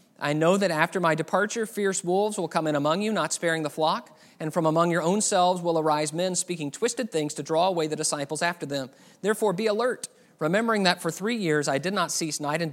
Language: English